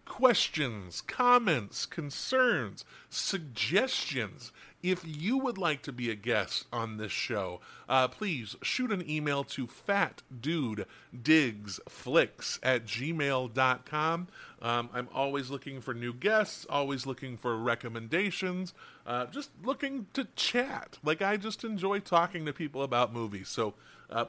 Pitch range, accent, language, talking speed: 125-190 Hz, American, English, 125 wpm